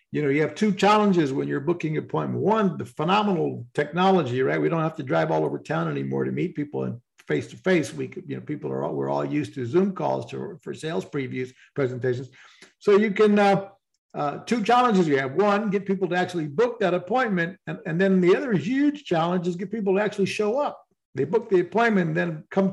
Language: English